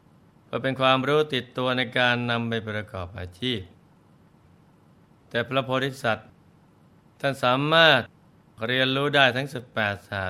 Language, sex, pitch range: Thai, male, 105-135 Hz